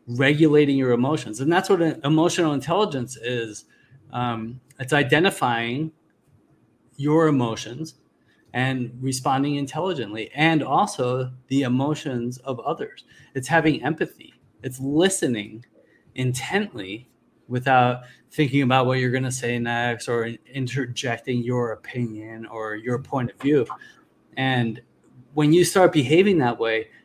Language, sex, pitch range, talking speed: English, male, 125-150 Hz, 120 wpm